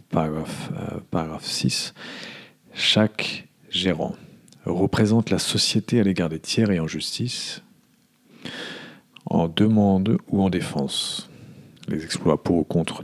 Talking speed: 120 wpm